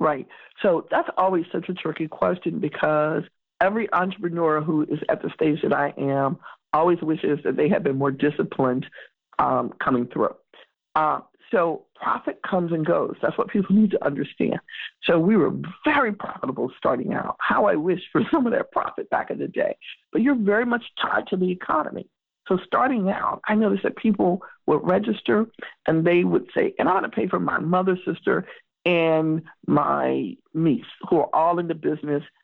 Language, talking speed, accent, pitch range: English, 185 wpm, American, 150-200 Hz